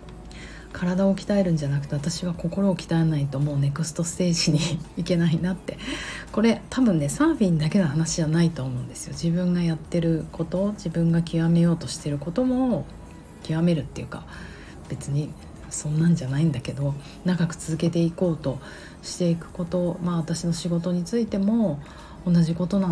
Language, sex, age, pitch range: Japanese, female, 40-59, 150-205 Hz